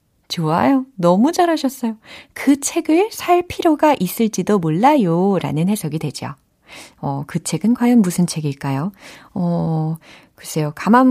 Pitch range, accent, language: 160-260 Hz, native, Korean